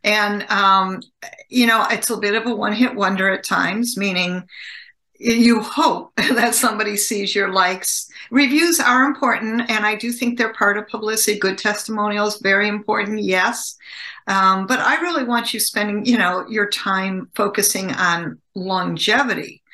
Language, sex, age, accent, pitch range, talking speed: English, female, 50-69, American, 200-245 Hz, 160 wpm